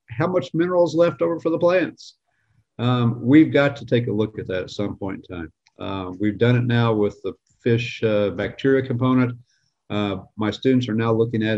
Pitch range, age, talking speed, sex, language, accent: 105-125 Hz, 50-69, 205 wpm, male, English, American